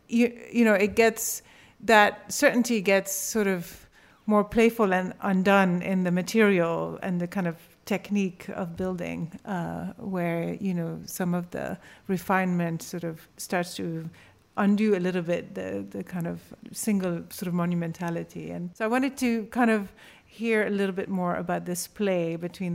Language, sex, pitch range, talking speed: English, female, 175-210 Hz, 170 wpm